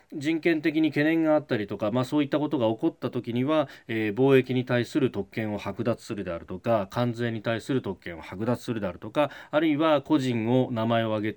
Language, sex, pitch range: Japanese, male, 105-145 Hz